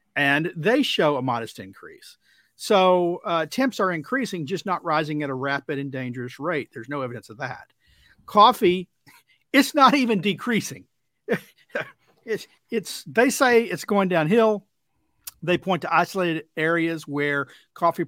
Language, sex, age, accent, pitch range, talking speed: English, male, 50-69, American, 140-180 Hz, 145 wpm